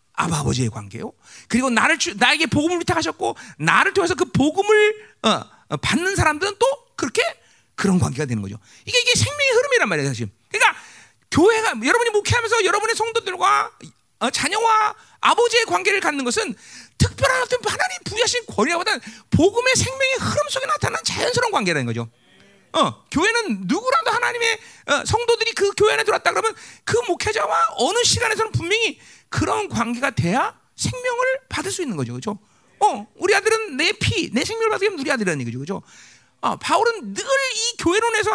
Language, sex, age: Korean, male, 40-59